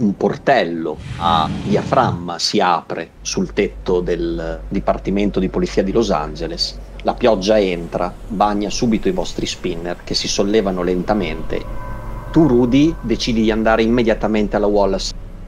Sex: male